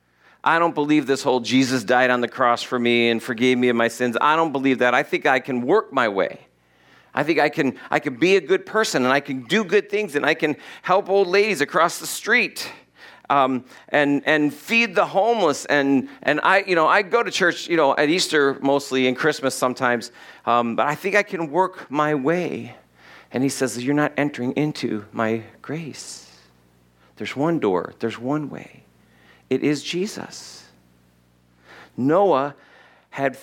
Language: English